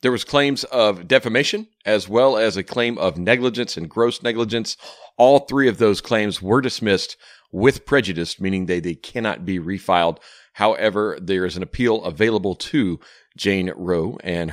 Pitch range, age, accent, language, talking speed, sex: 90-115 Hz, 40-59, American, English, 165 wpm, male